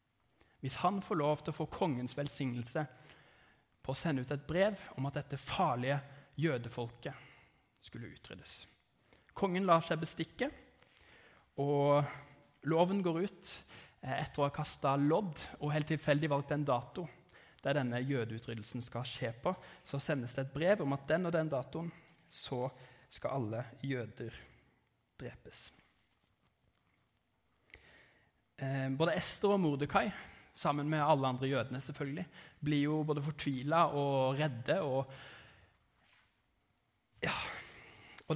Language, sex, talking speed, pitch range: English, male, 125 wpm, 130-155 Hz